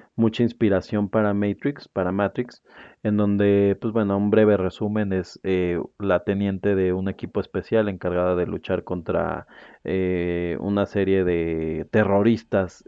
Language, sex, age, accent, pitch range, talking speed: Spanish, male, 30-49, Mexican, 95-110 Hz, 140 wpm